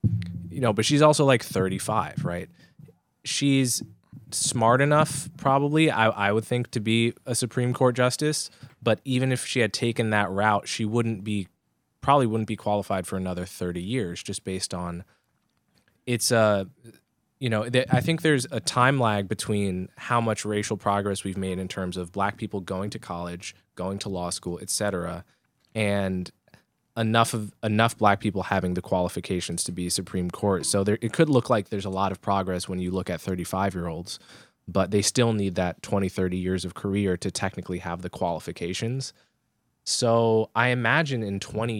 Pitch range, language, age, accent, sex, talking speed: 95-115 Hz, English, 20-39, American, male, 180 wpm